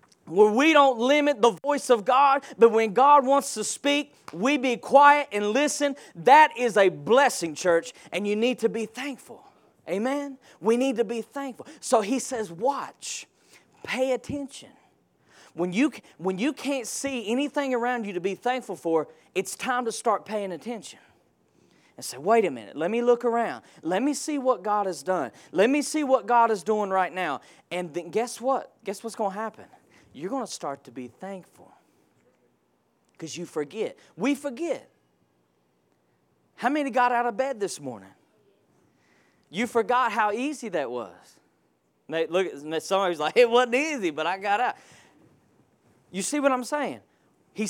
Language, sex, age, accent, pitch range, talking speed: English, male, 30-49, American, 180-265 Hz, 170 wpm